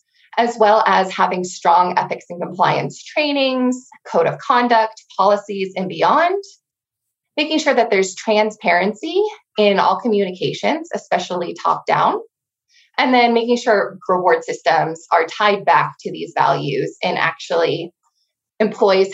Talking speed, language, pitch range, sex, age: 125 wpm, English, 190-290 Hz, female, 20-39